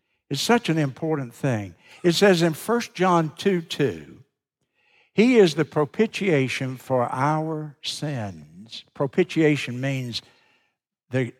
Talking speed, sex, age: 115 wpm, male, 60-79